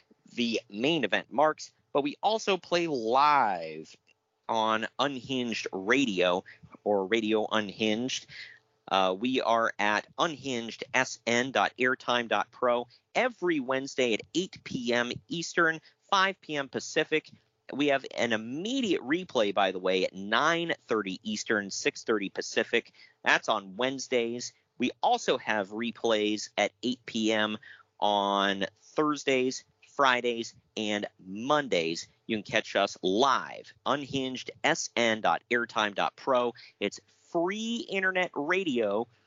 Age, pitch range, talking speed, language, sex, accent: 40-59, 110-165 Hz, 105 wpm, English, male, American